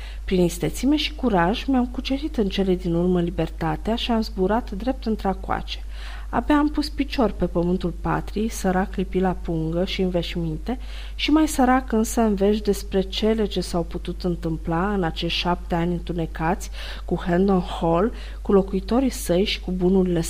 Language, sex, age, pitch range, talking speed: Romanian, female, 40-59, 170-240 Hz, 165 wpm